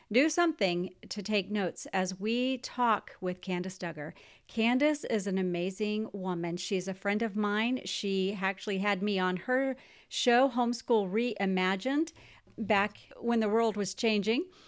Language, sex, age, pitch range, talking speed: English, female, 40-59, 190-265 Hz, 145 wpm